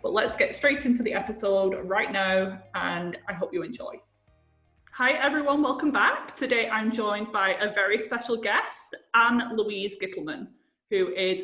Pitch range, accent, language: 190-240 Hz, British, English